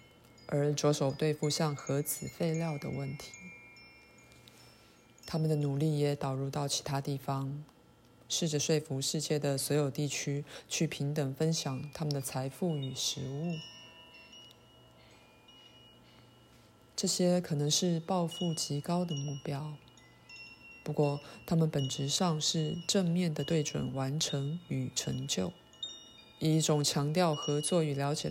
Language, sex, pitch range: Chinese, female, 135-160 Hz